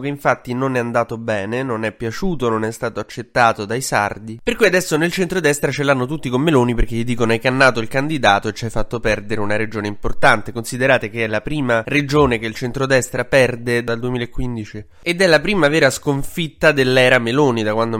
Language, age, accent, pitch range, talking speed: Italian, 20-39, native, 110-135 Hz, 210 wpm